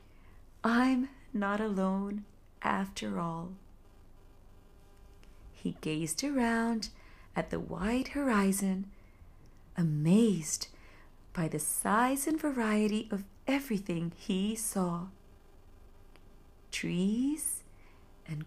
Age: 40-59